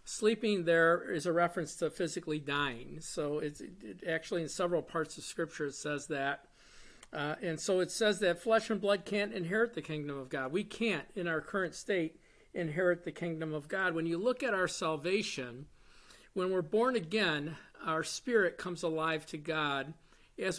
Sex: male